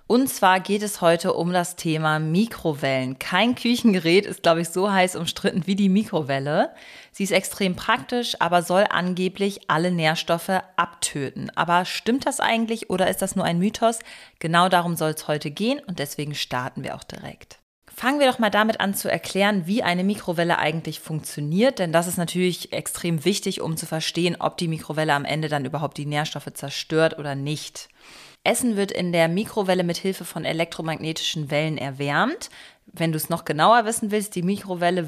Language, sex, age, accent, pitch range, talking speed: German, female, 30-49, German, 155-200 Hz, 180 wpm